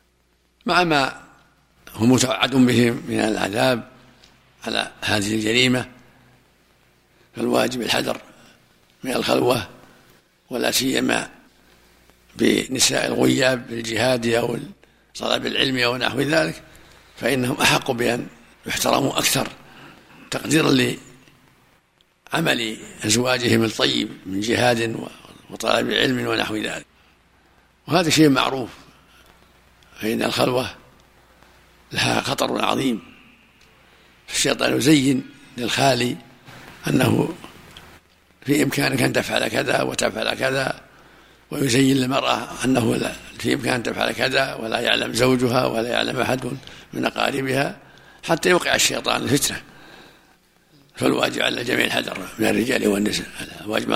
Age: 60-79